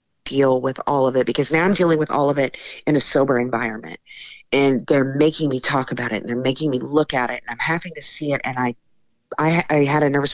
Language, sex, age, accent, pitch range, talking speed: English, female, 30-49, American, 130-155 Hz, 255 wpm